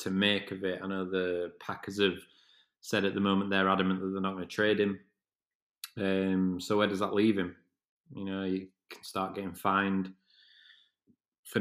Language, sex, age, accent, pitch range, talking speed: English, male, 20-39, British, 95-105 Hz, 190 wpm